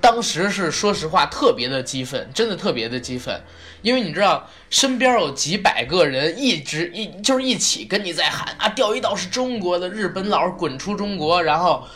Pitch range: 130-190 Hz